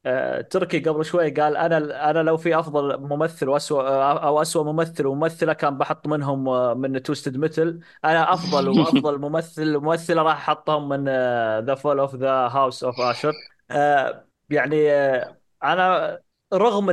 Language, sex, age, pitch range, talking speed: Arabic, male, 20-39, 140-175 Hz, 140 wpm